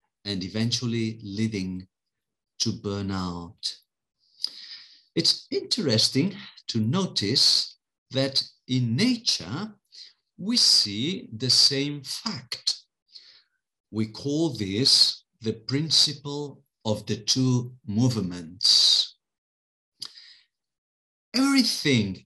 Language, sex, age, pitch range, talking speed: English, male, 50-69, 105-150 Hz, 75 wpm